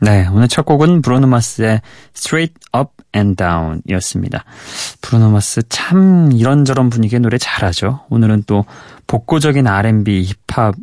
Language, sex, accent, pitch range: Korean, male, native, 100-135 Hz